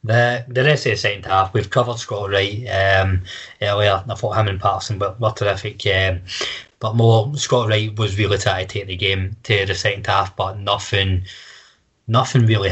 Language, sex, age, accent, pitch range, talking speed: English, male, 20-39, British, 95-115 Hz, 195 wpm